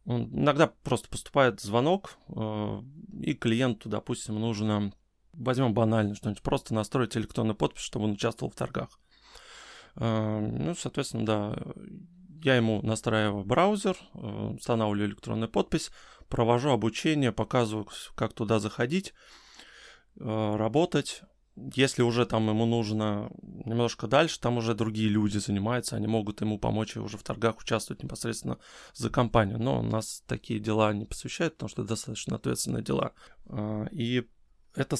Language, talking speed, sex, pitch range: Russian, 130 wpm, male, 110-130 Hz